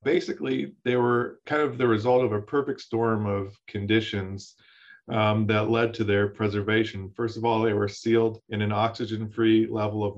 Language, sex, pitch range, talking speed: English, male, 100-110 Hz, 175 wpm